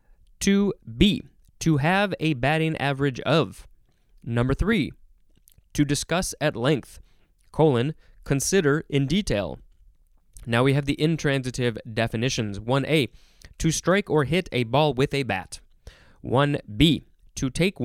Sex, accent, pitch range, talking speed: male, American, 115-165 Hz, 125 wpm